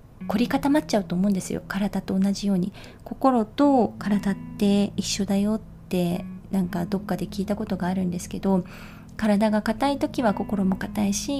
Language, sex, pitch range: Japanese, female, 195-230 Hz